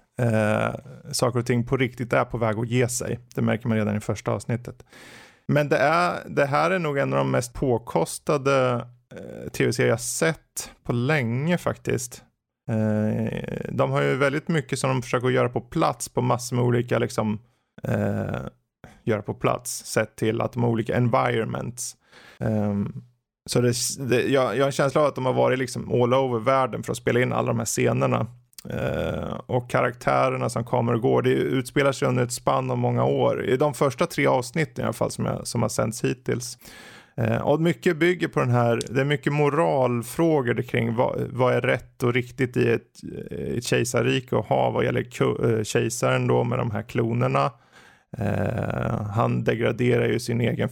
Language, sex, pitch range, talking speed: Swedish, male, 115-140 Hz, 190 wpm